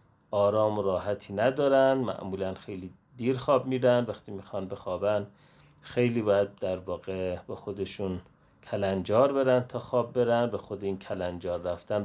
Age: 30-49